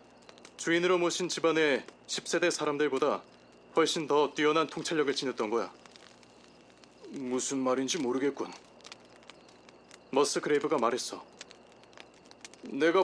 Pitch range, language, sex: 130-185 Hz, Korean, male